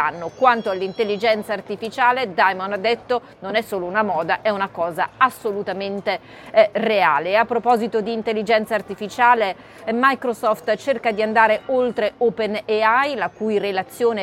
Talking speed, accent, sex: 140 wpm, native, female